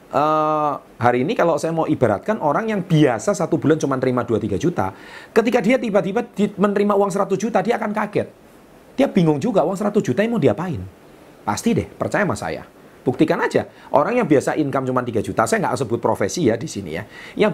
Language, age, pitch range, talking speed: Indonesian, 40-59, 130-210 Hz, 200 wpm